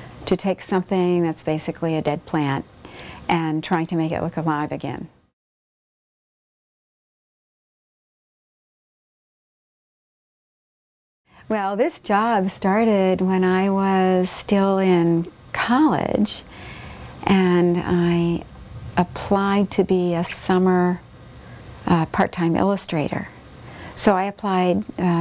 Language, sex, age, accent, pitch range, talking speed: English, female, 50-69, American, 165-195 Hz, 95 wpm